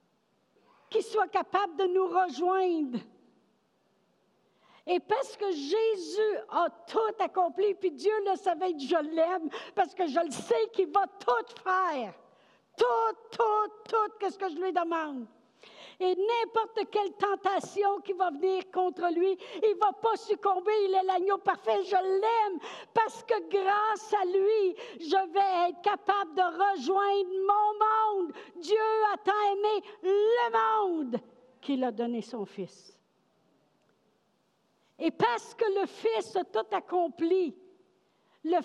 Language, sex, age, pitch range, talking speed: French, female, 60-79, 335-405 Hz, 140 wpm